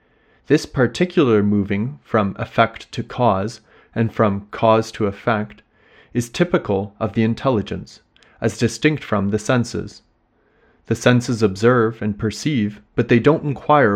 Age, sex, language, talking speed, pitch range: 30-49, male, English, 135 wpm, 105-130 Hz